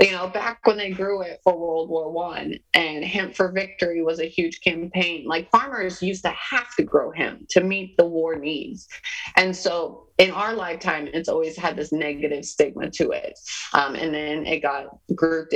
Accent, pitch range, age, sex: American, 150-185 Hz, 30-49, female